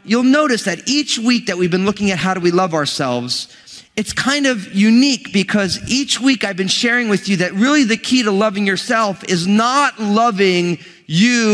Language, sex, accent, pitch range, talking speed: English, male, American, 190-235 Hz, 200 wpm